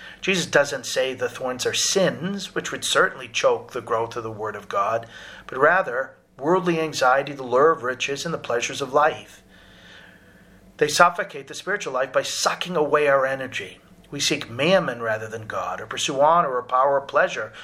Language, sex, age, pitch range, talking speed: English, male, 40-59, 130-170 Hz, 185 wpm